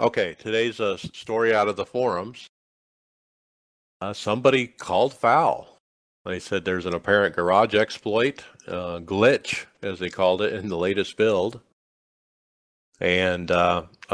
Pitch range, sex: 95-115 Hz, male